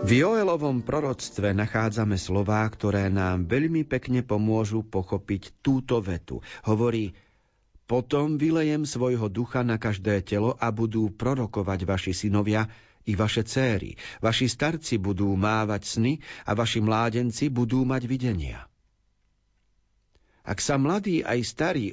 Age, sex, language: 50-69, male, Slovak